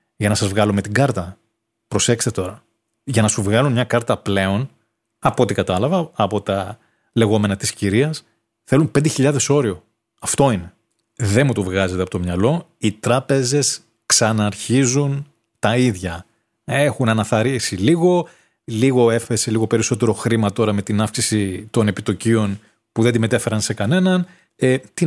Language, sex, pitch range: Greek, male, 105-130 Hz